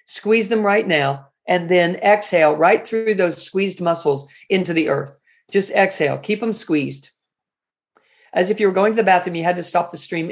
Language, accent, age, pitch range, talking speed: German, American, 50-69, 160-200 Hz, 200 wpm